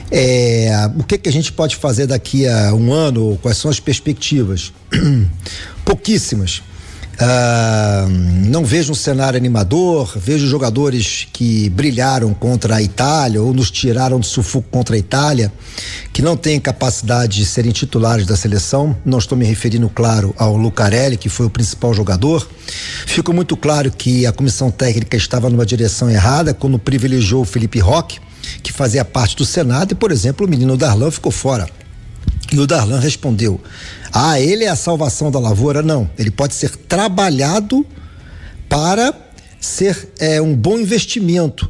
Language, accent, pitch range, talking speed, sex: Portuguese, Brazilian, 110-145 Hz, 155 wpm, male